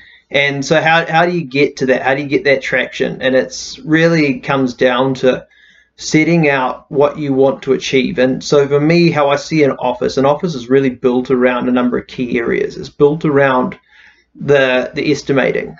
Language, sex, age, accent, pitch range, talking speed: English, male, 30-49, Australian, 130-145 Hz, 205 wpm